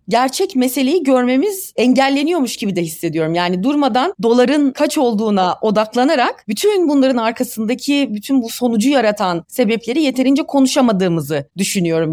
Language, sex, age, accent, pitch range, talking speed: Turkish, female, 30-49, native, 185-270 Hz, 120 wpm